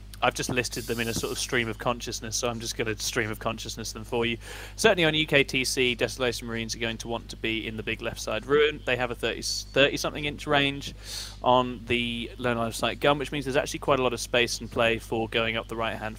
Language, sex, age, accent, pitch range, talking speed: English, male, 20-39, British, 110-125 Hz, 265 wpm